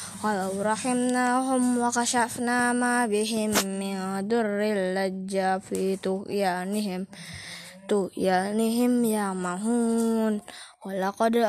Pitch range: 195-230 Hz